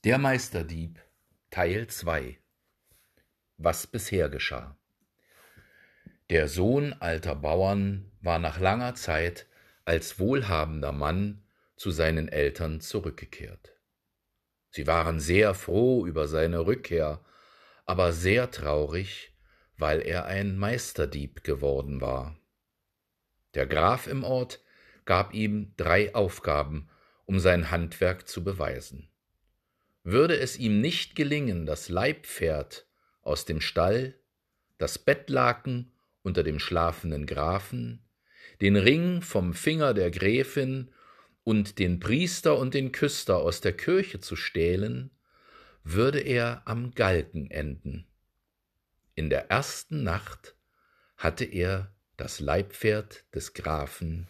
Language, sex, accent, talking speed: German, male, German, 110 wpm